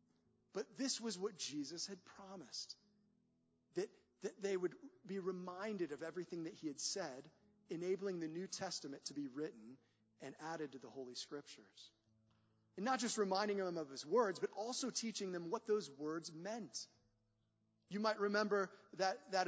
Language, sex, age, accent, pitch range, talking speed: English, male, 30-49, American, 150-215 Hz, 165 wpm